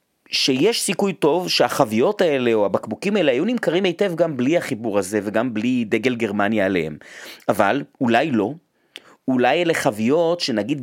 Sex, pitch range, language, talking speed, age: male, 120-180 Hz, Hebrew, 150 wpm, 30-49